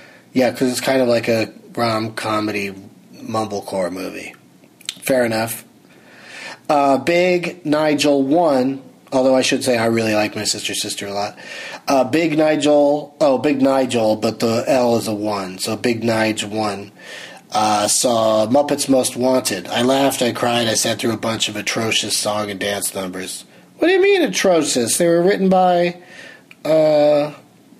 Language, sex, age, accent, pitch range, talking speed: English, male, 30-49, American, 115-175 Hz, 160 wpm